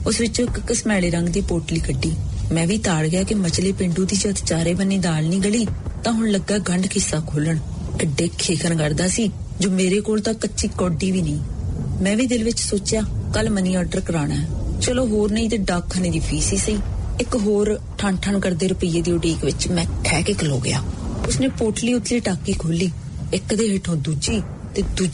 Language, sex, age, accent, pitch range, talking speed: English, female, 30-49, Indian, 170-215 Hz, 140 wpm